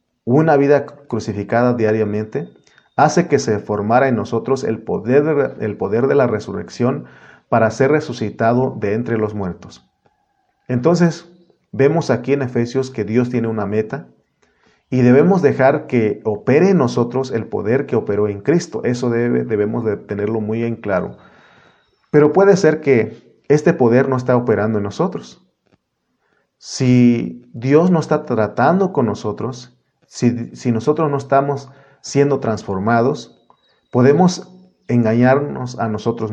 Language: Spanish